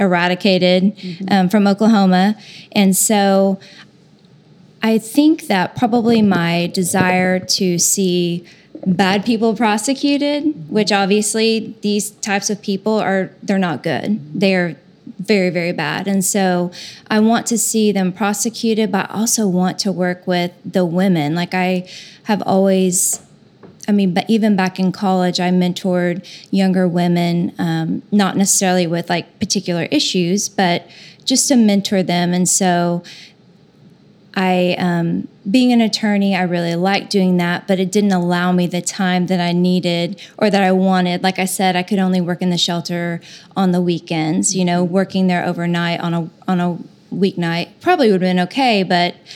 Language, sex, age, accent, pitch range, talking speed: English, female, 20-39, American, 180-205 Hz, 160 wpm